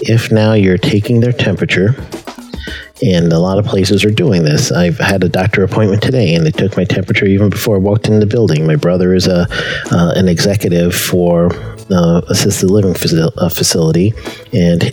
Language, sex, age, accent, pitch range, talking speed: English, male, 40-59, American, 90-115 Hz, 195 wpm